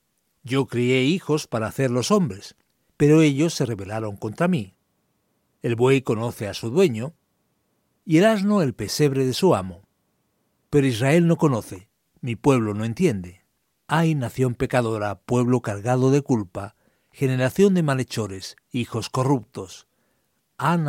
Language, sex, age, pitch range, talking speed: Spanish, male, 60-79, 115-155 Hz, 140 wpm